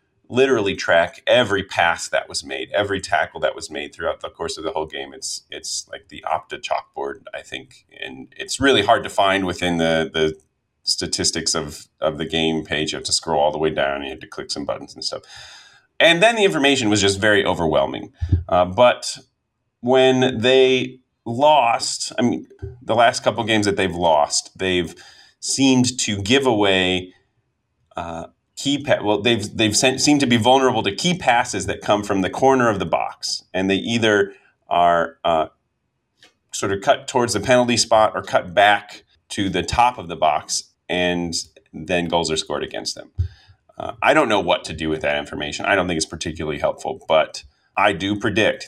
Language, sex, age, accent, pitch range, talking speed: English, male, 30-49, American, 85-120 Hz, 195 wpm